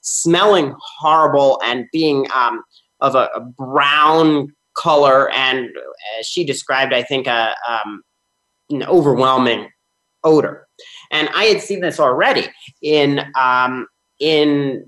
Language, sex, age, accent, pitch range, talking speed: English, male, 30-49, American, 135-185 Hz, 120 wpm